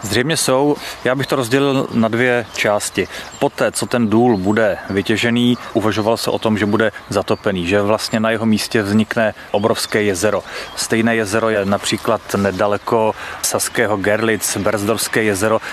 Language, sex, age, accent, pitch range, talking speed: Czech, male, 30-49, native, 105-120 Hz, 150 wpm